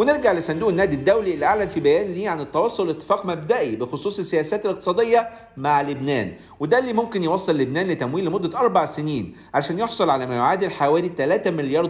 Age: 50-69